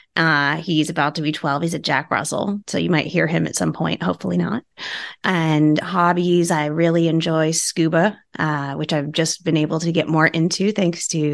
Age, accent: 30-49, American